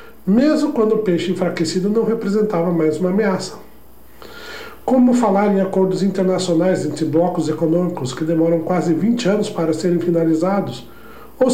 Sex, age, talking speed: male, 60-79, 140 wpm